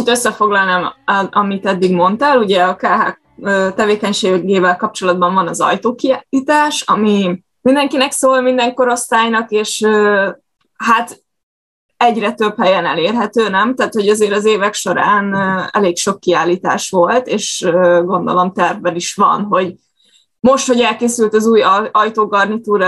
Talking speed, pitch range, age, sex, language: 125 wpm, 190-240 Hz, 20-39, female, Hungarian